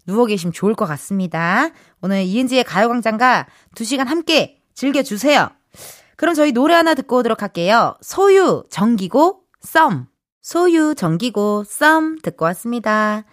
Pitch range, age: 190-280 Hz, 20-39